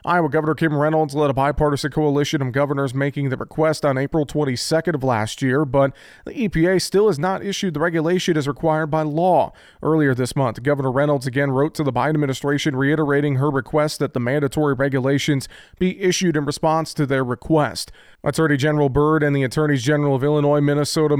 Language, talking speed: English, 190 wpm